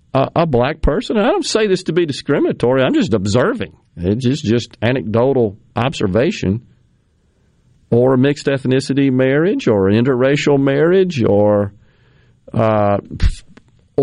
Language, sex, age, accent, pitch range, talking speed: English, male, 50-69, American, 110-140 Hz, 120 wpm